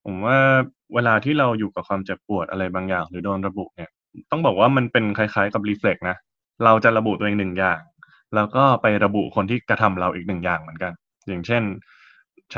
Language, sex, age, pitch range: Thai, male, 20-39, 95-115 Hz